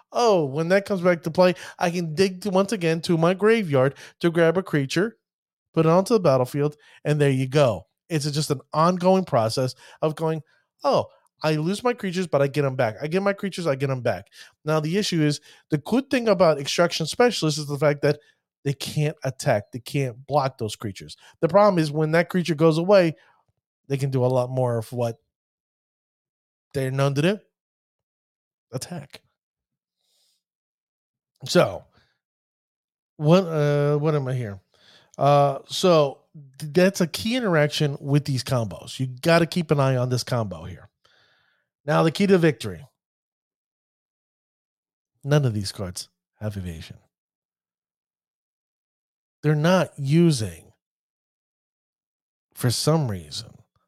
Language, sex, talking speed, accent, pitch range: English, male, 155 wpm, American, 130-170 Hz